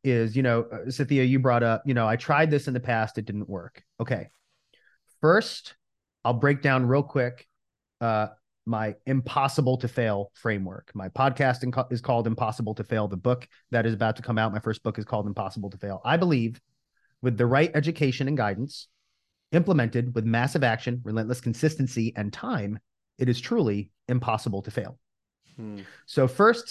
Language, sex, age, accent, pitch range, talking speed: English, male, 30-49, American, 115-145 Hz, 175 wpm